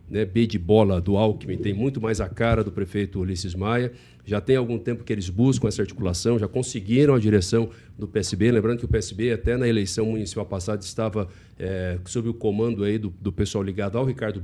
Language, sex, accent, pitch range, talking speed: Portuguese, male, Brazilian, 100-120 Hz, 205 wpm